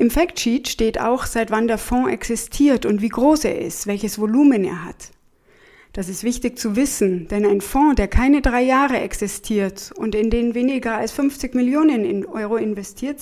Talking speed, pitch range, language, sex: 185 wpm, 205-265 Hz, German, female